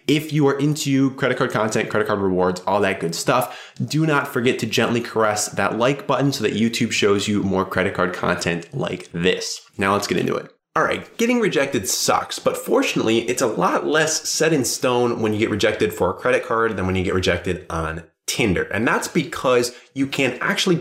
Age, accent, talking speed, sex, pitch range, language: 20-39, American, 215 wpm, male, 95-135 Hz, English